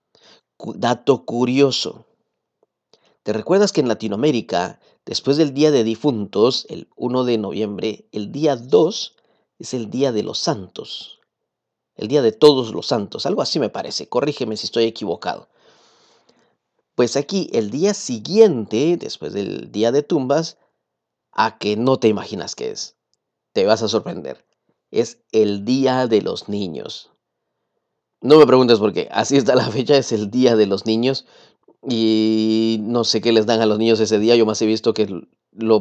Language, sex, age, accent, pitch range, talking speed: English, male, 40-59, Mexican, 110-150 Hz, 165 wpm